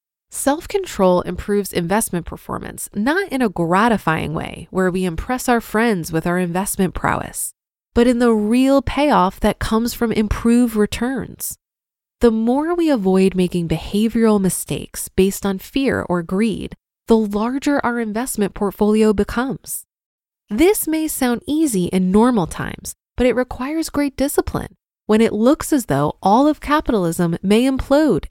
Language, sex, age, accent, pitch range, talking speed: English, female, 20-39, American, 195-265 Hz, 145 wpm